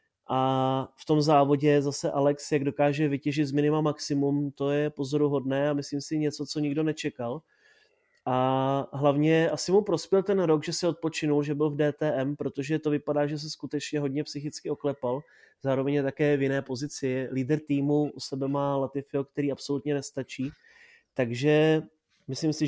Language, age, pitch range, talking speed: Czech, 30-49, 140-155 Hz, 165 wpm